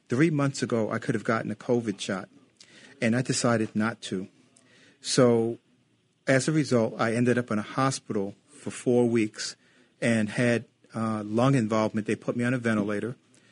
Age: 40-59